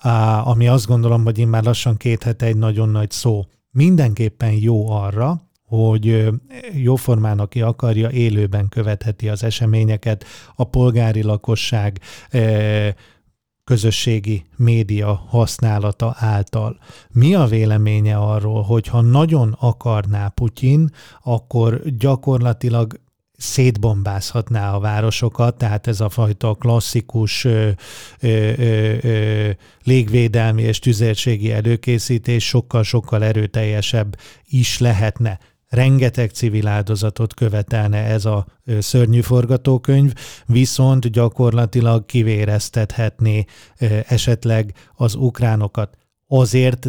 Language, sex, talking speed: Hungarian, male, 100 wpm